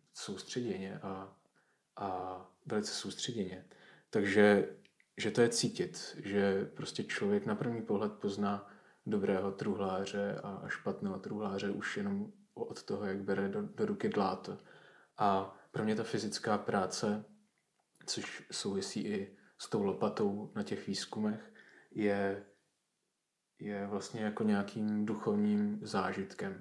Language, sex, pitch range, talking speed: Czech, male, 95-105 Hz, 120 wpm